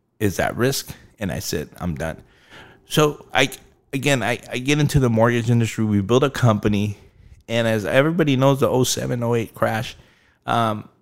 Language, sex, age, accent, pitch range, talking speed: English, male, 30-49, American, 105-125 Hz, 165 wpm